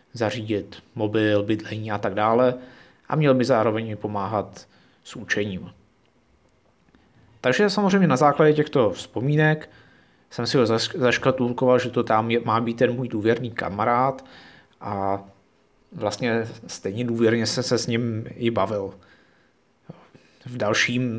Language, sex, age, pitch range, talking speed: Czech, male, 30-49, 110-130 Hz, 125 wpm